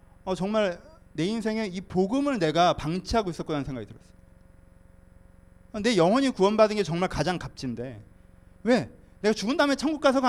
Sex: male